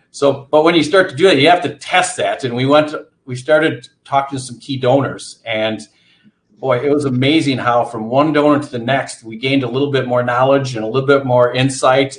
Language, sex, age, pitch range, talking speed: English, male, 50-69, 120-145 Hz, 240 wpm